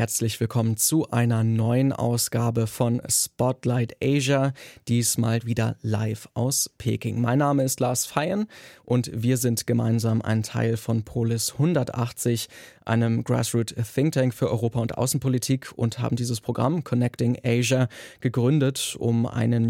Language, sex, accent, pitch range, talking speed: German, male, German, 115-130 Hz, 130 wpm